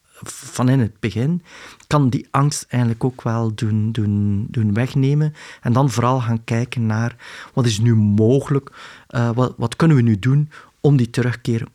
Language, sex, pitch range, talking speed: Dutch, male, 115-140 Hz, 170 wpm